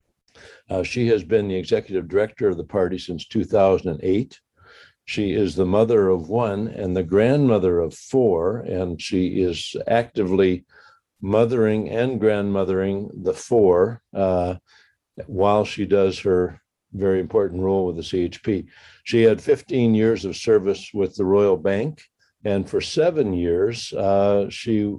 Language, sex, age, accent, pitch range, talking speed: English, male, 60-79, American, 95-110 Hz, 140 wpm